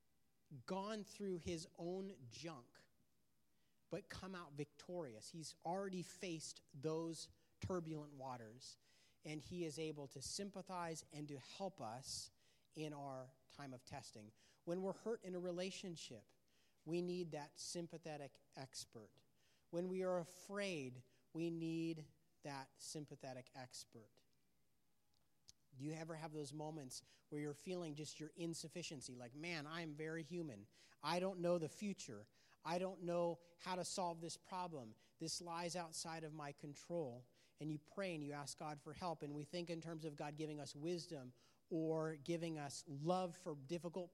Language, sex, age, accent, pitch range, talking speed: English, male, 40-59, American, 140-175 Hz, 150 wpm